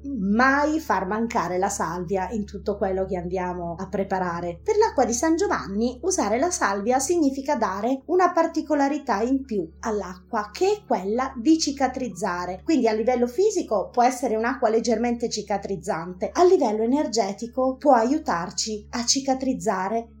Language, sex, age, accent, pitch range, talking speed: Italian, female, 20-39, native, 180-250 Hz, 145 wpm